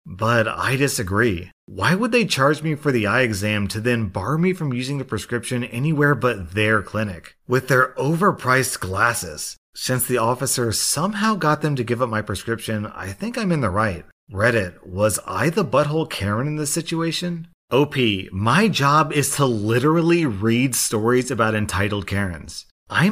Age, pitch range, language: 30-49, 105-145 Hz, English